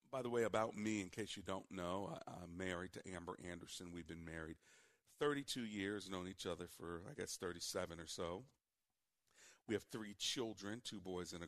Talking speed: 195 wpm